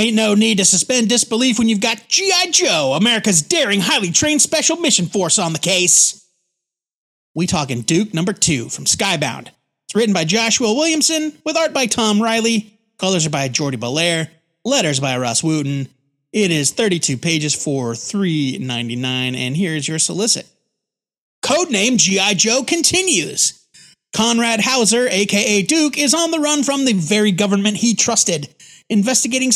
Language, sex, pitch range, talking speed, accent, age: English, male, 170-245 Hz, 155 wpm, American, 30-49